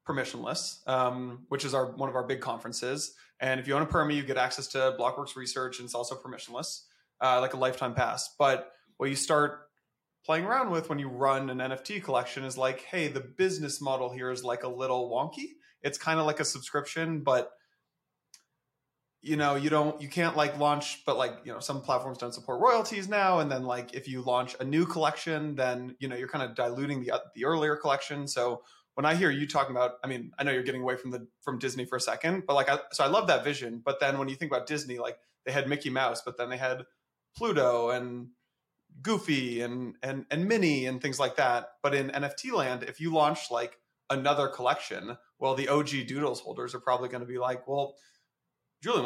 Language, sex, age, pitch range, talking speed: English, male, 20-39, 125-150 Hz, 220 wpm